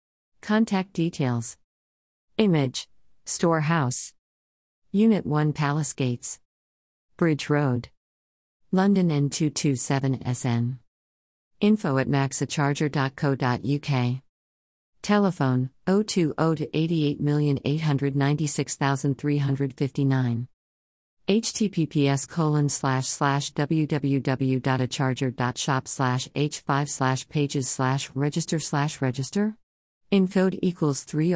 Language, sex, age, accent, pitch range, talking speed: English, female, 50-69, American, 130-155 Hz, 65 wpm